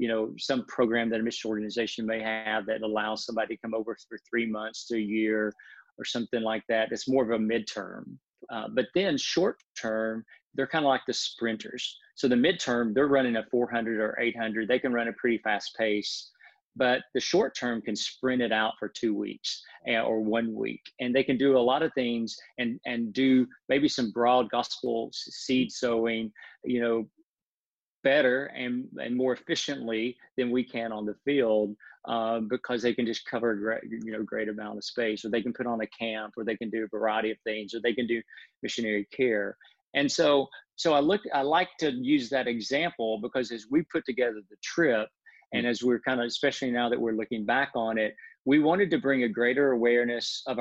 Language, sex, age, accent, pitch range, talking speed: English, male, 40-59, American, 110-125 Hz, 205 wpm